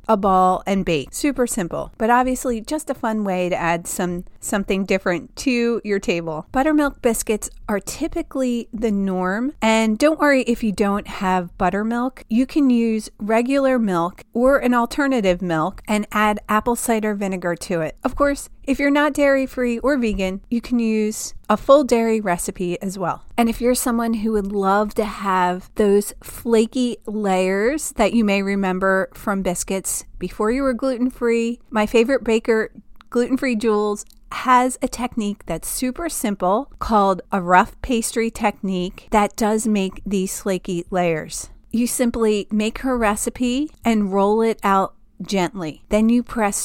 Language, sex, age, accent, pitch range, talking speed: English, female, 30-49, American, 195-245 Hz, 160 wpm